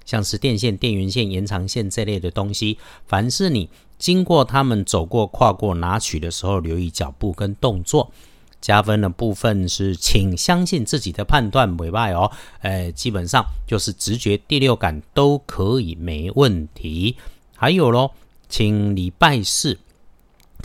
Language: Chinese